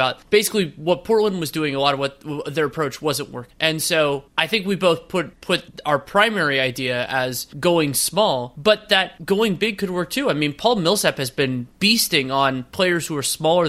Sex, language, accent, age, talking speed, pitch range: male, English, American, 20-39, 200 wpm, 135-175 Hz